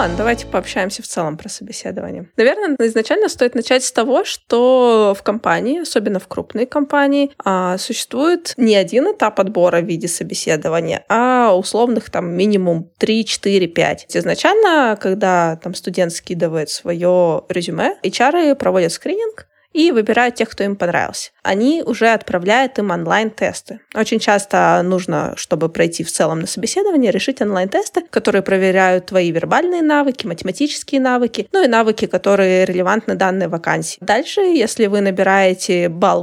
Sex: female